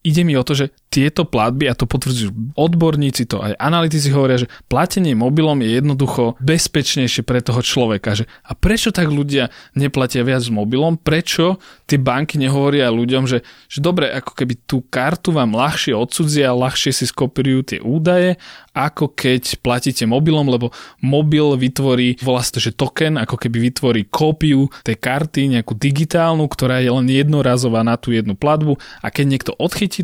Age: 20-39